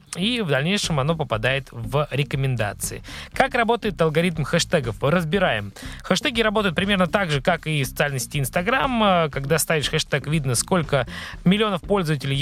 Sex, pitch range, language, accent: male, 135-185 Hz, Russian, native